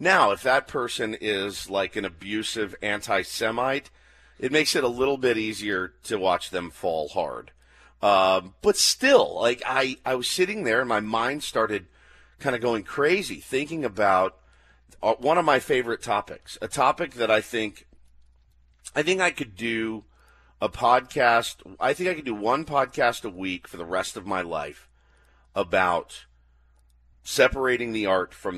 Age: 40-59